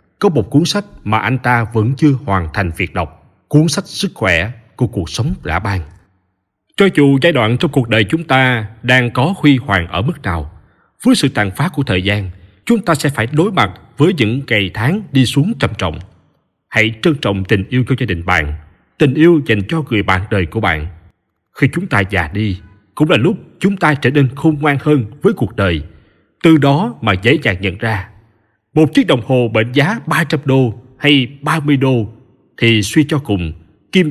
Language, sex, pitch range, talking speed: Vietnamese, male, 100-150 Hz, 210 wpm